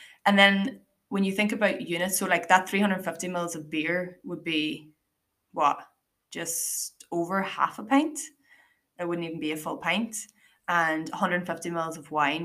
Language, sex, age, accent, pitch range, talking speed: English, female, 20-39, Irish, 160-210 Hz, 165 wpm